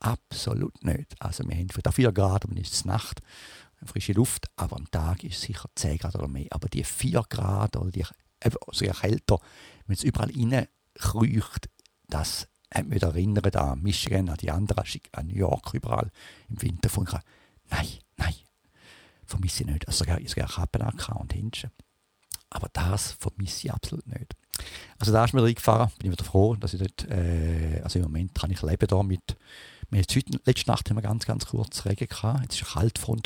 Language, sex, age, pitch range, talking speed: English, male, 50-69, 90-110 Hz, 195 wpm